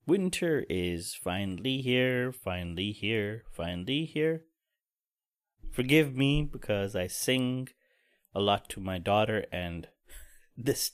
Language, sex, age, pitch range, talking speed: English, male, 30-49, 100-130 Hz, 110 wpm